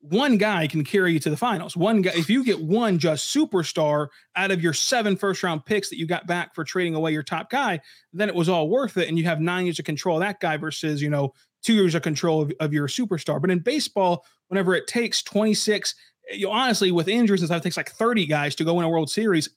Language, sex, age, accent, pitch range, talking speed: English, male, 30-49, American, 160-195 Hz, 260 wpm